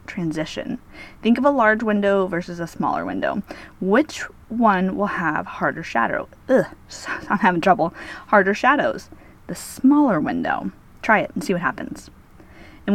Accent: American